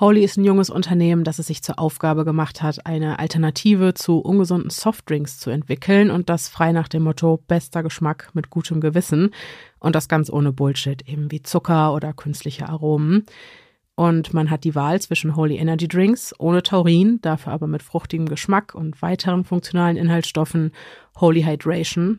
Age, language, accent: 30-49, German, German